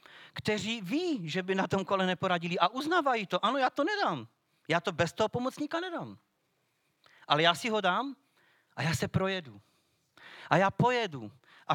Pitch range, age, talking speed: 175-240 Hz, 40-59, 175 wpm